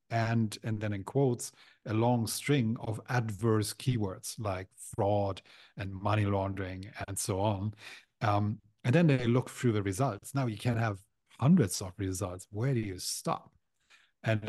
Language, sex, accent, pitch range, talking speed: English, male, German, 100-120 Hz, 160 wpm